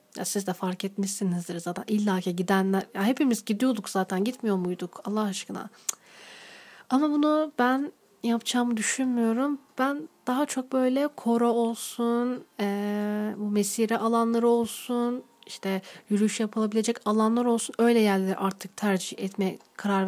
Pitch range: 200-245 Hz